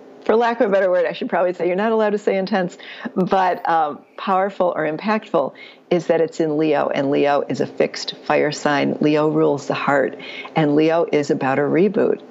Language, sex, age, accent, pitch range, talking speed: English, female, 50-69, American, 145-170 Hz, 210 wpm